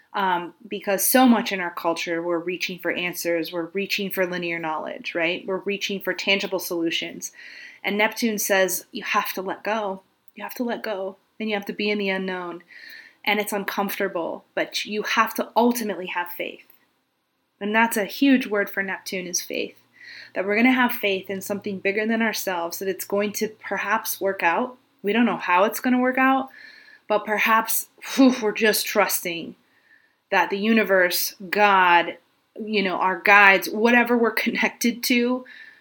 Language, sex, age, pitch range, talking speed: English, female, 20-39, 185-230 Hz, 180 wpm